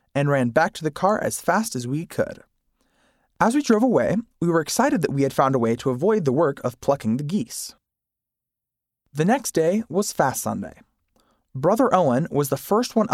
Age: 20-39